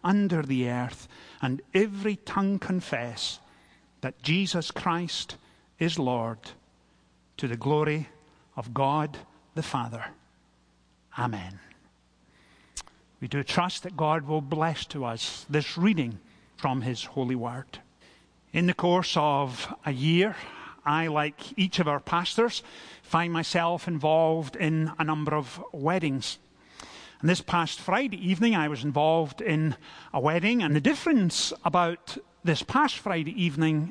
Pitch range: 145-190 Hz